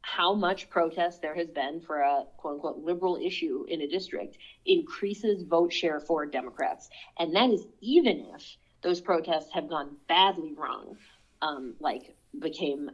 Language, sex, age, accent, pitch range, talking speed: English, female, 30-49, American, 165-230 Hz, 155 wpm